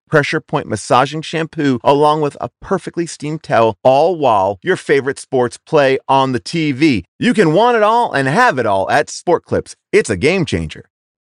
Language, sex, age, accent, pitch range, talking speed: English, male, 30-49, American, 115-160 Hz, 185 wpm